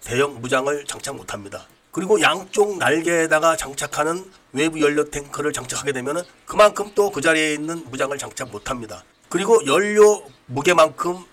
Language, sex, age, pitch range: Korean, male, 40-59, 145-205 Hz